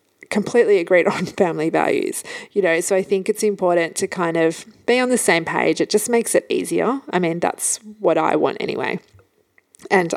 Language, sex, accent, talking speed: English, female, Australian, 195 wpm